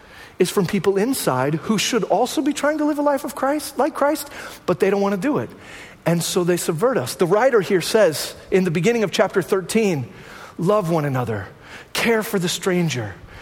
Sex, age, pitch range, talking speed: male, 40-59, 170-255 Hz, 200 wpm